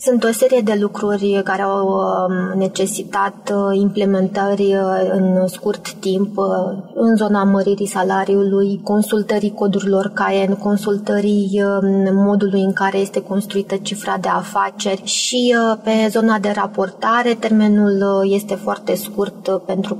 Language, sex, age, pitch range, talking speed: Romanian, female, 20-39, 195-215 Hz, 115 wpm